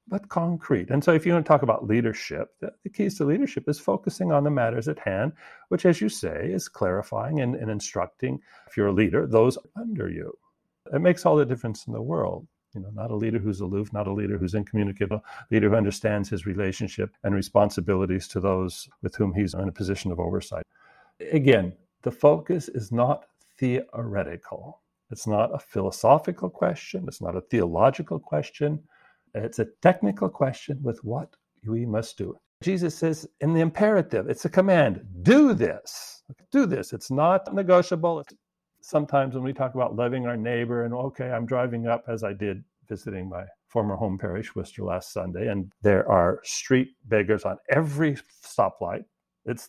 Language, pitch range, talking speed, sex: English, 105-150 Hz, 180 wpm, male